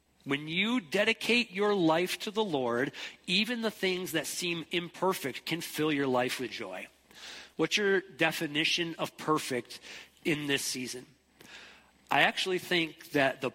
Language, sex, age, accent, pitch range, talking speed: English, male, 40-59, American, 135-180 Hz, 145 wpm